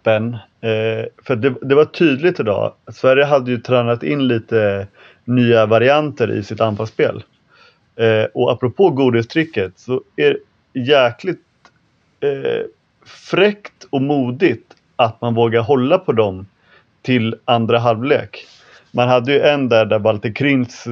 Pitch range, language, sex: 110-140 Hz, English, male